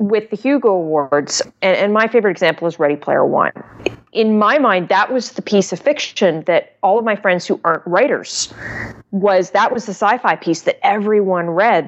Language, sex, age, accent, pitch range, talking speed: English, female, 30-49, American, 155-215 Hz, 195 wpm